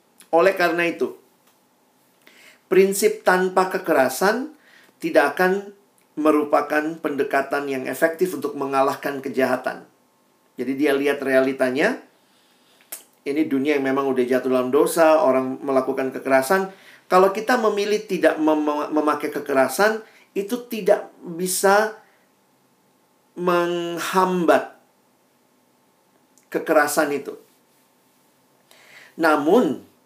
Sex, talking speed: male, 90 wpm